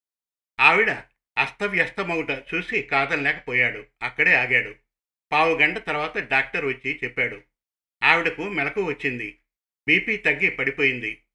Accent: native